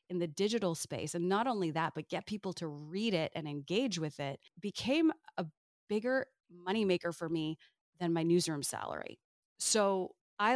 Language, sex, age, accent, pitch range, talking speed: English, female, 30-49, American, 160-200 Hz, 170 wpm